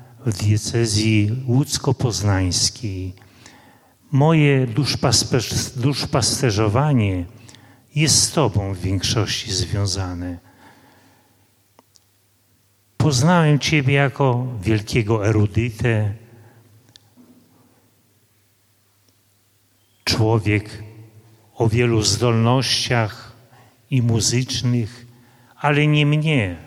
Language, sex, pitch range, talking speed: Polish, male, 105-125 Hz, 55 wpm